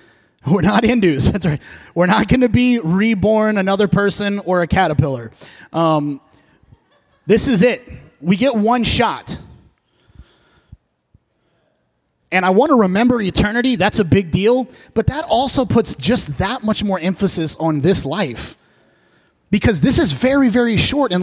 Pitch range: 140-195 Hz